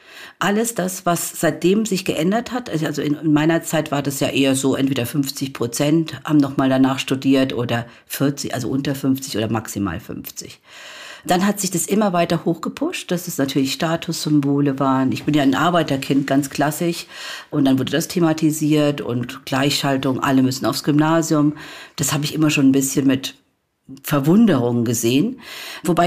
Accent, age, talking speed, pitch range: German, 50-69, 165 wpm, 140-175 Hz